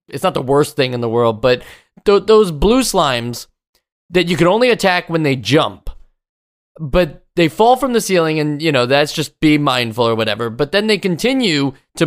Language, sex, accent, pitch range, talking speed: English, male, American, 140-185 Hz, 200 wpm